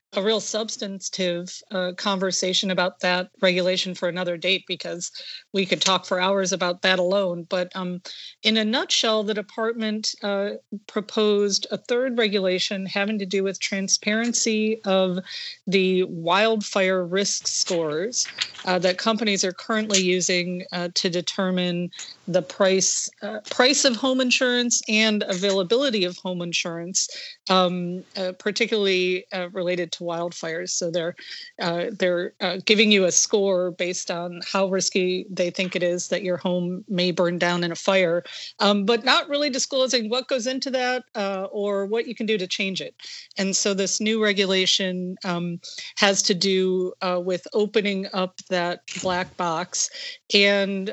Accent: American